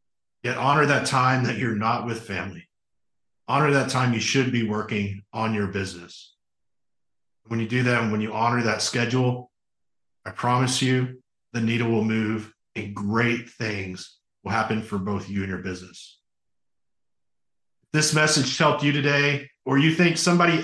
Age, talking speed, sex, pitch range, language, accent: 40-59, 165 wpm, male, 110-130 Hz, English, American